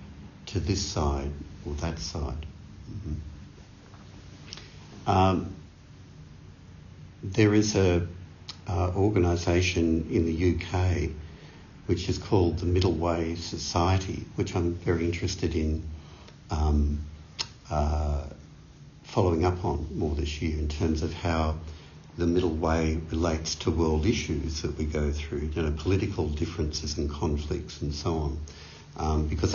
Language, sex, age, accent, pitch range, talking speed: English, male, 60-79, Australian, 80-95 Hz, 125 wpm